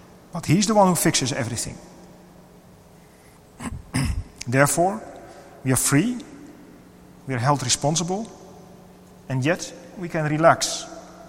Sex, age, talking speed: male, 40-59, 105 wpm